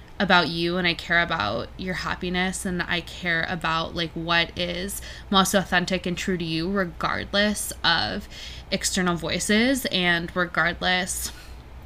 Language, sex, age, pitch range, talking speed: English, female, 20-39, 165-195 Hz, 135 wpm